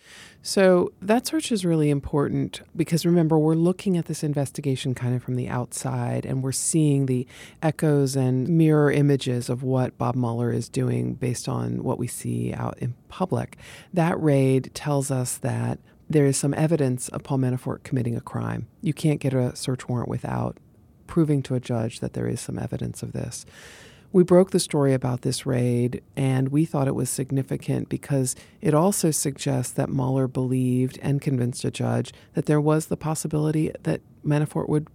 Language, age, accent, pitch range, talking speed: English, 40-59, American, 125-155 Hz, 180 wpm